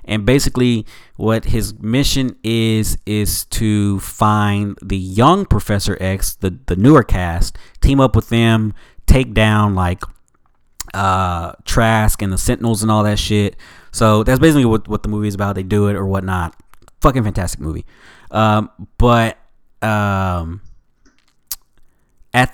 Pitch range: 95-115 Hz